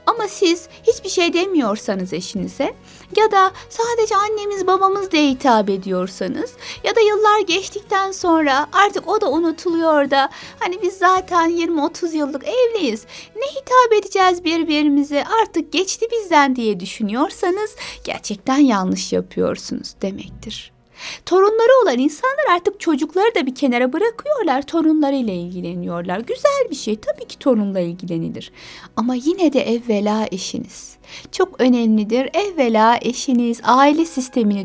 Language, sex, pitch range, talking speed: Turkish, female, 235-385 Hz, 125 wpm